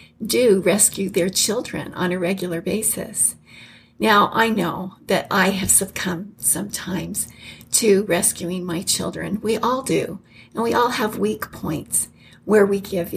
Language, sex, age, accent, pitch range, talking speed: English, female, 50-69, American, 185-230 Hz, 145 wpm